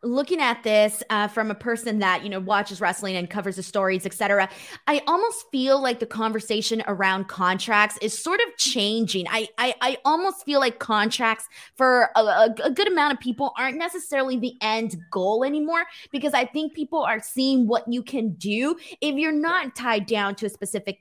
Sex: female